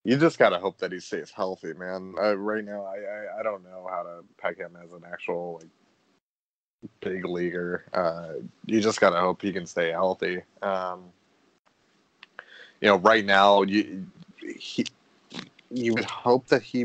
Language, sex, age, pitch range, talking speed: English, male, 20-39, 90-105 Hz, 170 wpm